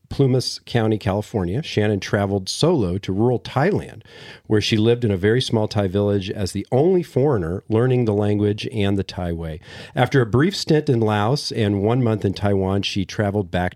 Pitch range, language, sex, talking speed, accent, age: 100-130 Hz, English, male, 190 wpm, American, 40-59